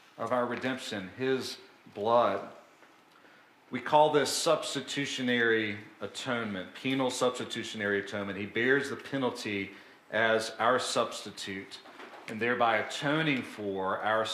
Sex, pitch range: male, 110-135 Hz